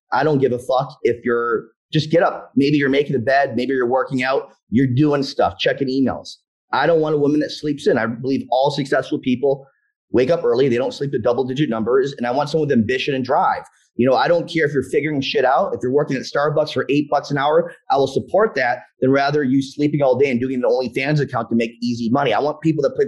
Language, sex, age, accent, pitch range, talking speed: English, male, 30-49, American, 135-195 Hz, 260 wpm